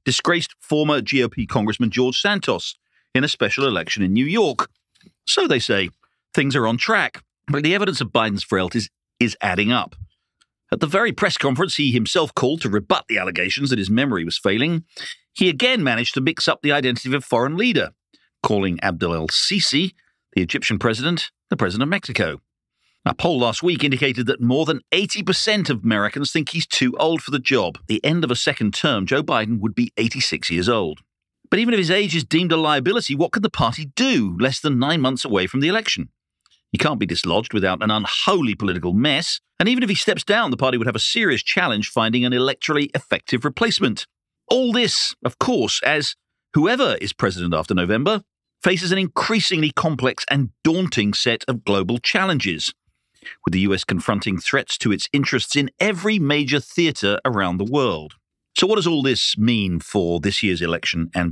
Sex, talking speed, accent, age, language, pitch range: male, 190 wpm, British, 50-69, English, 110-165 Hz